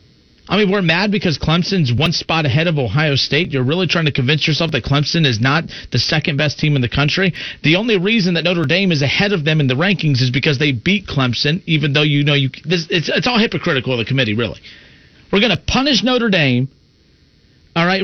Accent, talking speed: American, 215 wpm